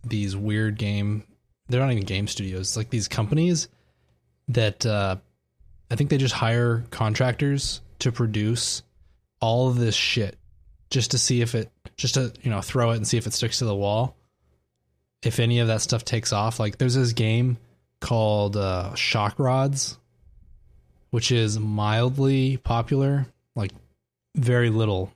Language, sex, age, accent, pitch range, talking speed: English, male, 20-39, American, 100-125 Hz, 160 wpm